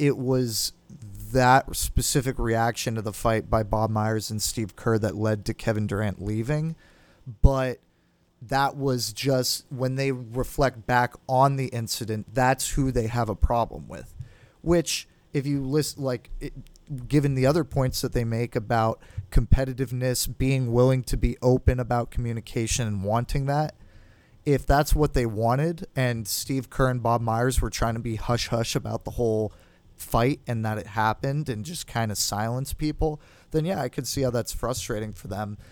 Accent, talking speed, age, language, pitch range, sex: American, 175 wpm, 30-49, English, 110-135 Hz, male